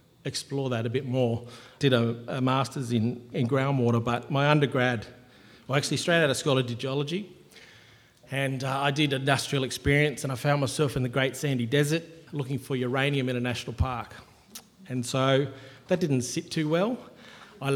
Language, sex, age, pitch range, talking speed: English, male, 40-59, 125-145 Hz, 185 wpm